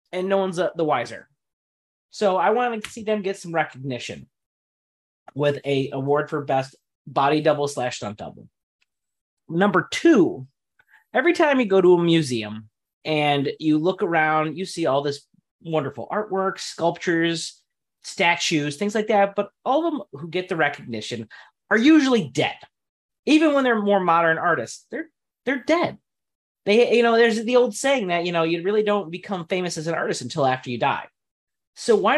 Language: English